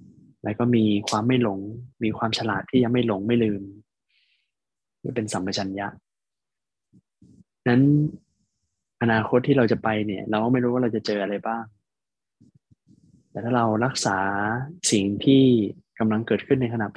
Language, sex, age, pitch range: Thai, male, 20-39, 105-125 Hz